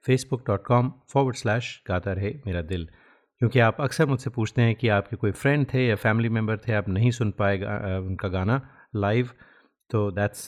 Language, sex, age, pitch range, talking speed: Hindi, male, 30-49, 105-125 Hz, 190 wpm